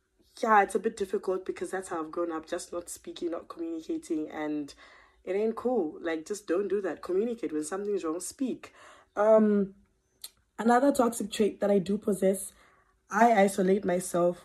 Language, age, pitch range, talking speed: English, 20-39, 180-240 Hz, 170 wpm